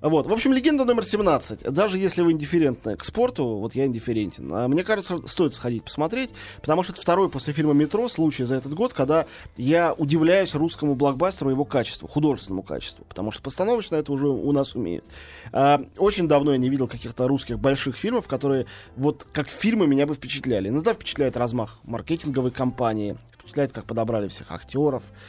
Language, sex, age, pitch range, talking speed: Russian, male, 20-39, 120-170 Hz, 175 wpm